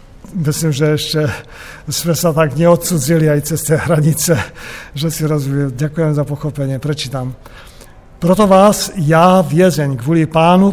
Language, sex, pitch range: Slovak, male, 150-185 Hz